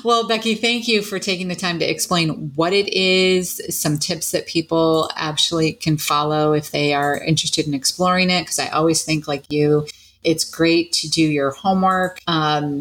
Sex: female